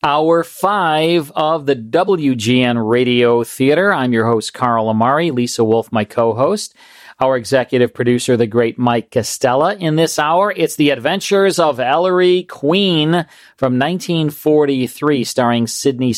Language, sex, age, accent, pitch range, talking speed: English, male, 40-59, American, 120-160 Hz, 135 wpm